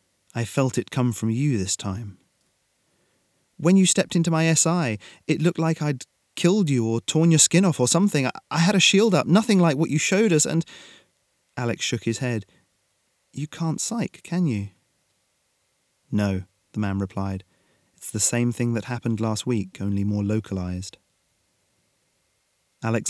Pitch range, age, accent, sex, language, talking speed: 100-125 Hz, 30-49, British, male, English, 170 wpm